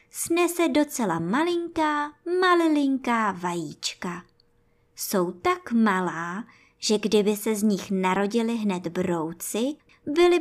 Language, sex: Czech, male